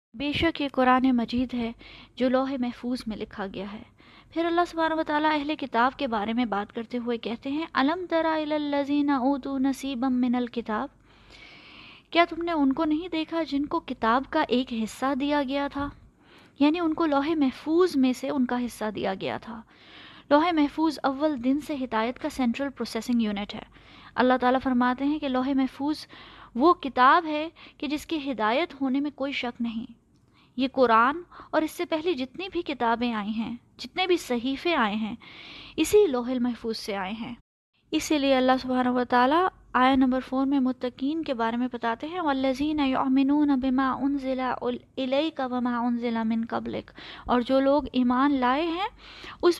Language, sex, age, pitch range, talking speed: Urdu, female, 20-39, 245-310 Hz, 180 wpm